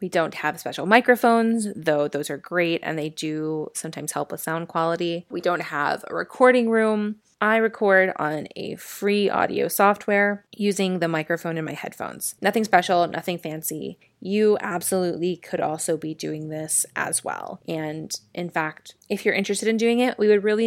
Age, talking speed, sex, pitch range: 20-39, 175 wpm, female, 155-205 Hz